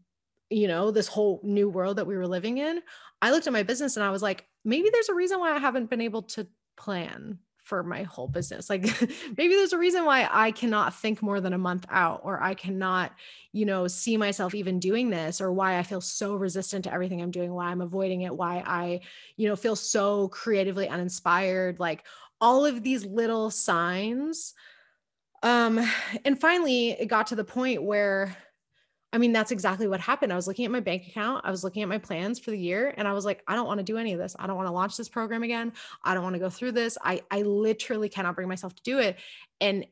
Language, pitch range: English, 190-240 Hz